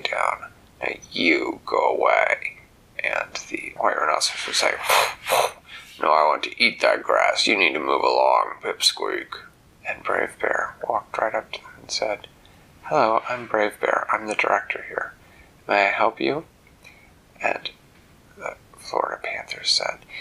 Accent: American